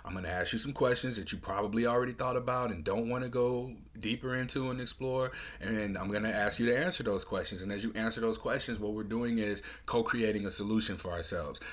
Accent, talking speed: American, 240 wpm